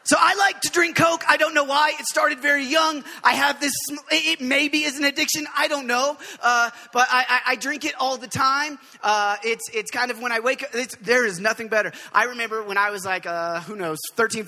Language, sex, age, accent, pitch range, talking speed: English, male, 20-39, American, 185-260 Hz, 245 wpm